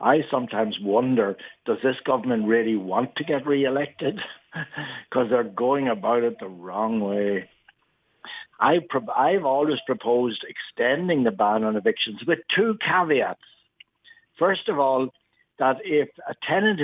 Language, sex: English, male